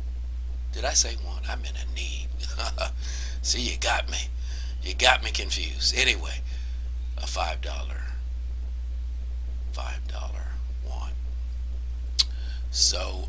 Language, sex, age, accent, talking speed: English, male, 60-79, American, 100 wpm